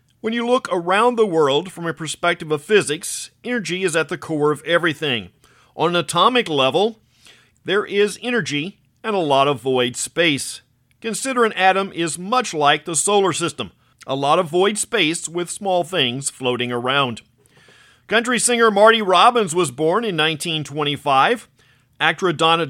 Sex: male